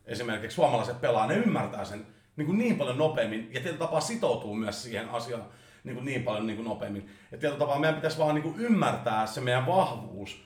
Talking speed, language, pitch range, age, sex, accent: 185 wpm, Finnish, 110-150 Hz, 40-59, male, native